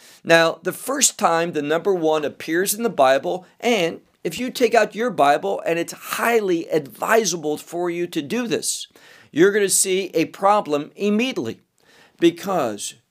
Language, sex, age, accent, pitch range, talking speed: English, male, 50-69, American, 145-195 Hz, 160 wpm